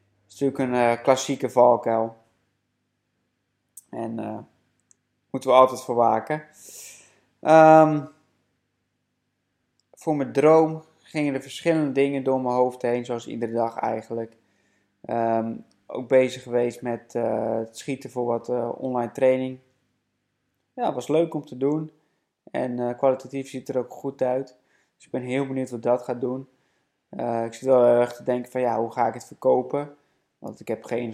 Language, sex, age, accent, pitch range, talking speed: Dutch, male, 20-39, Dutch, 115-130 Hz, 160 wpm